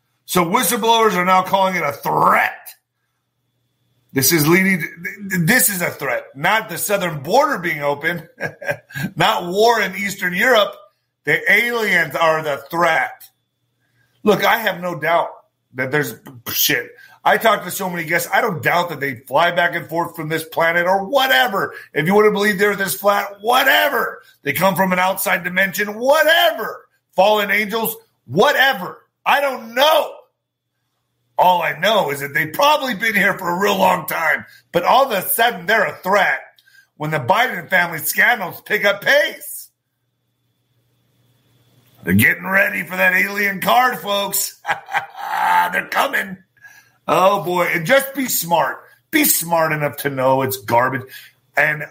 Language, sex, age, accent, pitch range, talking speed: English, male, 30-49, American, 165-220 Hz, 155 wpm